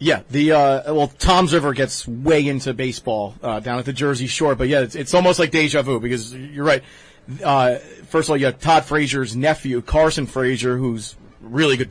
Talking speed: 210 wpm